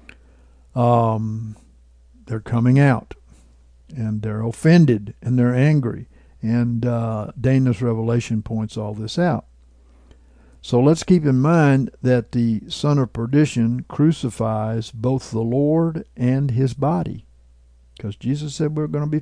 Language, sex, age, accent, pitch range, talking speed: English, male, 60-79, American, 105-130 Hz, 130 wpm